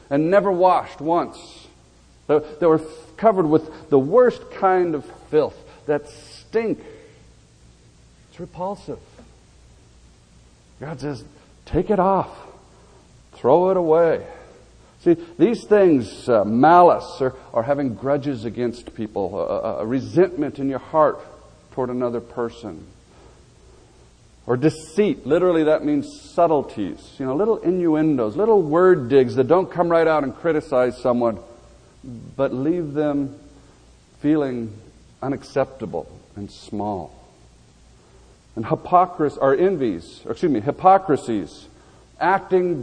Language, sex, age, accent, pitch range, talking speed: English, male, 50-69, American, 115-170 Hz, 110 wpm